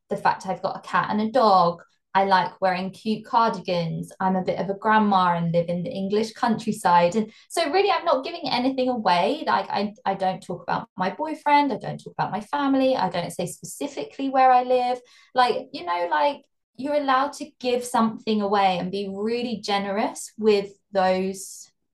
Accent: British